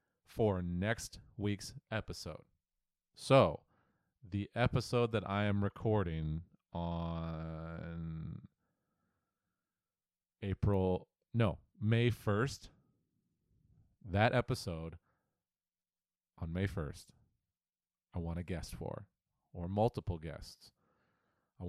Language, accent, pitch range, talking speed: English, American, 90-115 Hz, 85 wpm